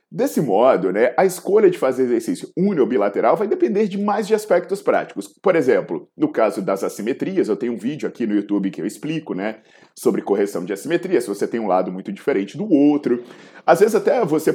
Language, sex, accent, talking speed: Portuguese, male, Brazilian, 215 wpm